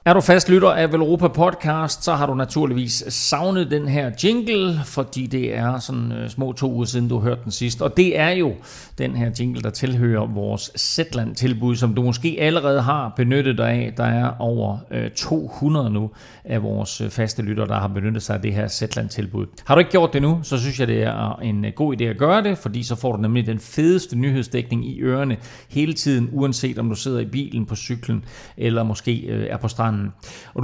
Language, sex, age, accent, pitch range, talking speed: Danish, male, 40-59, native, 110-140 Hz, 200 wpm